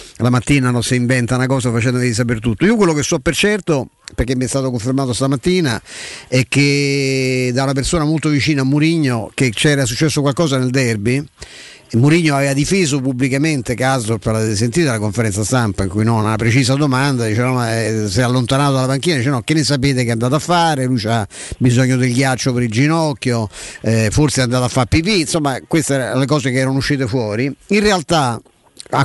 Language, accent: Italian, native